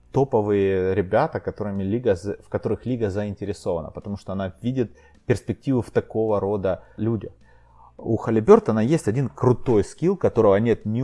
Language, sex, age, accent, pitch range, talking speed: Russian, male, 30-49, native, 100-125 Hz, 140 wpm